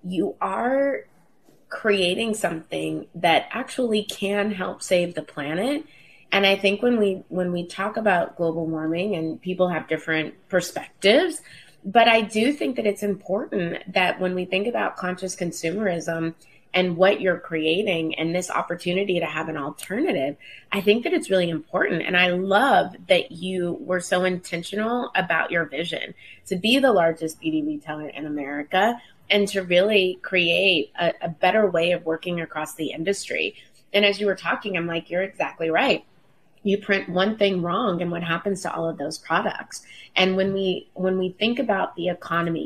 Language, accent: English, American